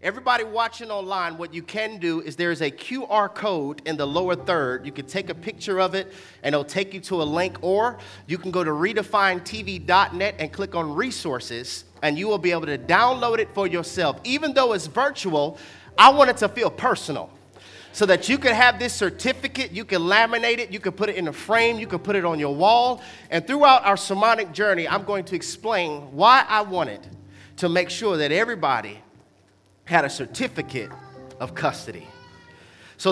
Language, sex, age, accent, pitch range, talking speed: English, male, 30-49, American, 150-220 Hz, 200 wpm